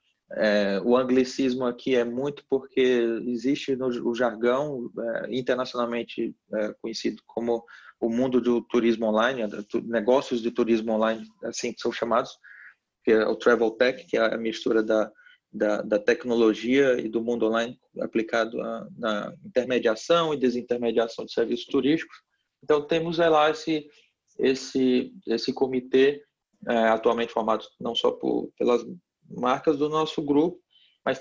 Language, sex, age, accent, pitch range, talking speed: Portuguese, male, 20-39, Brazilian, 120-145 Hz, 150 wpm